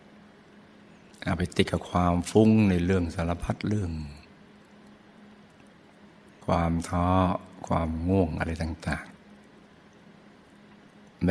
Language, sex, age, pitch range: Thai, male, 60-79, 85-95 Hz